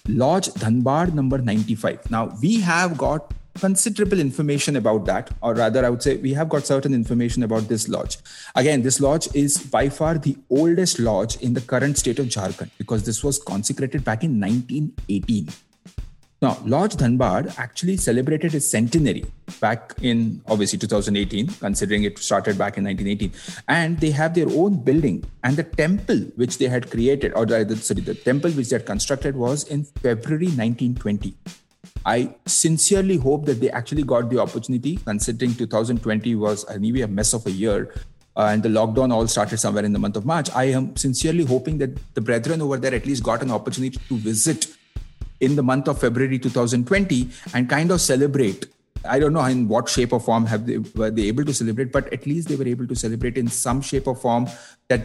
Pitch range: 115-145 Hz